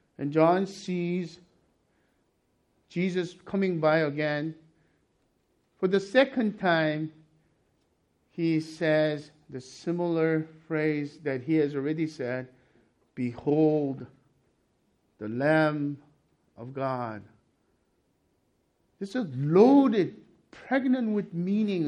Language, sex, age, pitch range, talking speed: English, male, 50-69, 135-185 Hz, 90 wpm